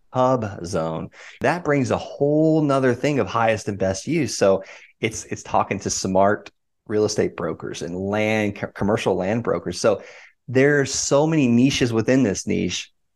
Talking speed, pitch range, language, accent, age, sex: 160 wpm, 110-145 Hz, English, American, 30-49, male